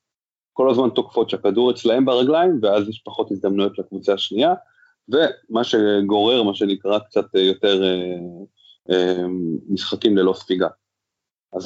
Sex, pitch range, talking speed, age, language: male, 95-125 Hz, 115 wpm, 20-39, Hebrew